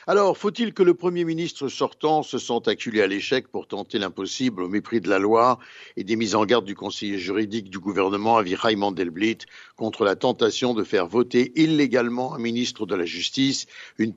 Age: 60-79